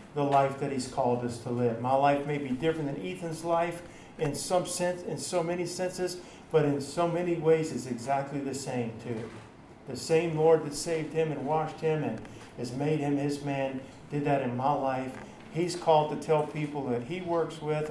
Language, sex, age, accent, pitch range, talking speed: English, male, 50-69, American, 135-170 Hz, 210 wpm